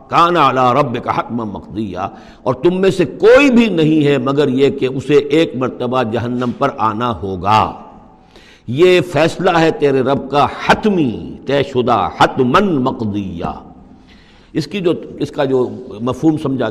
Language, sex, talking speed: Urdu, male, 135 wpm